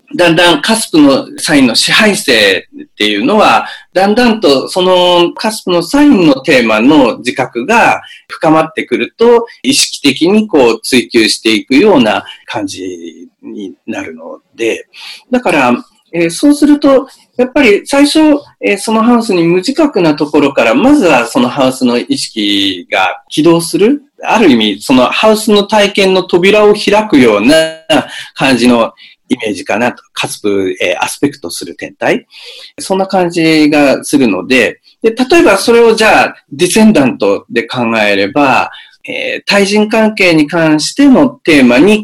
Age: 40-59